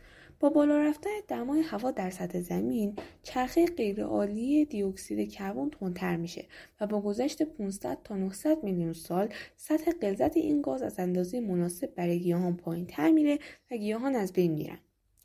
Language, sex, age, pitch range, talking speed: Persian, female, 10-29, 185-290 Hz, 150 wpm